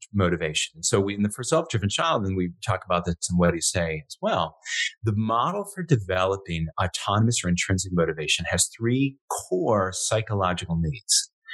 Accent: American